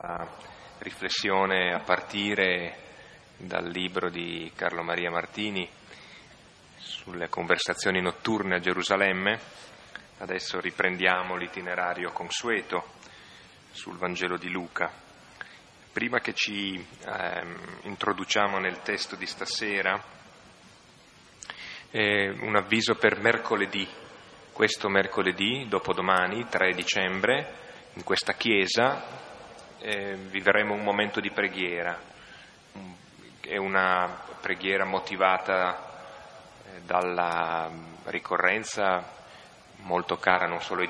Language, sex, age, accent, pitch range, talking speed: Italian, male, 30-49, native, 85-100 Hz, 90 wpm